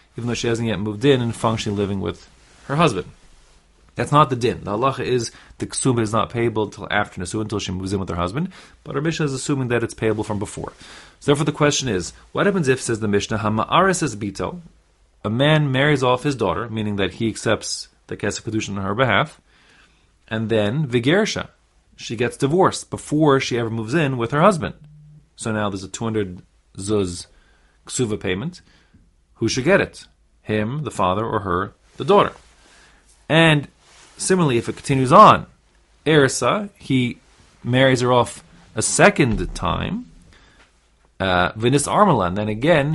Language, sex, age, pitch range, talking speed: English, male, 30-49, 100-135 Hz, 175 wpm